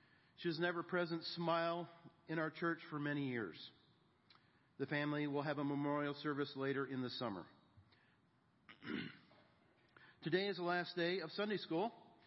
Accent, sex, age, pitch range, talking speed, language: American, male, 40-59, 140-165 Hz, 140 wpm, English